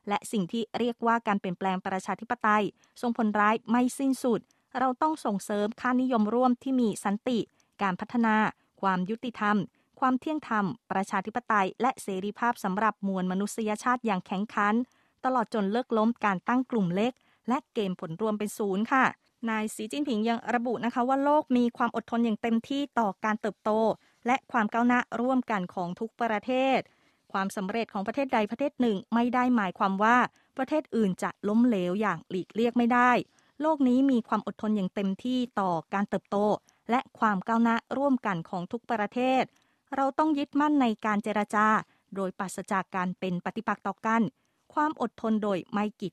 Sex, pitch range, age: female, 200-245 Hz, 20-39